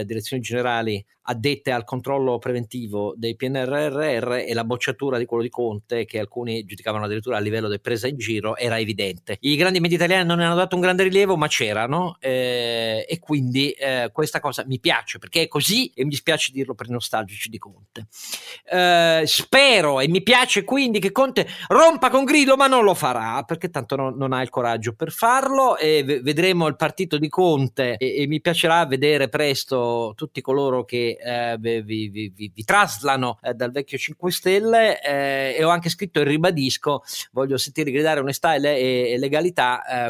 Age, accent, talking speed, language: 40-59, native, 185 wpm, Italian